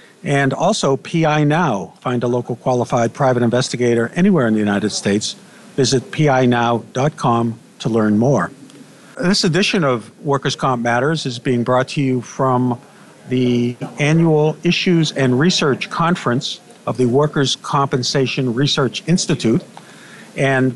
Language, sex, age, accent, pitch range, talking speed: English, male, 50-69, American, 125-160 Hz, 130 wpm